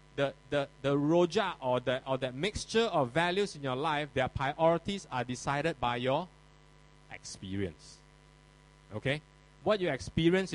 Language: English